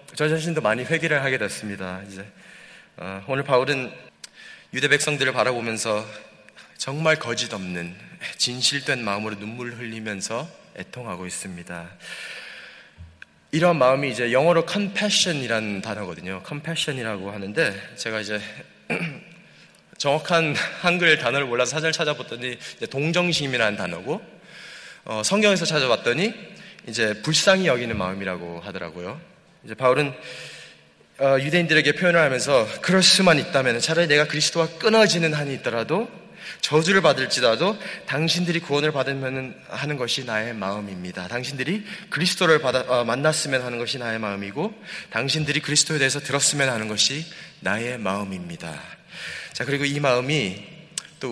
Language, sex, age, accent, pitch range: Korean, male, 20-39, native, 110-155 Hz